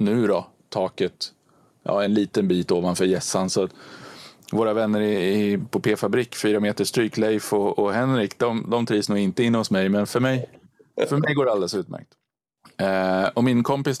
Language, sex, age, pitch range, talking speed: Swedish, male, 30-49, 95-115 Hz, 185 wpm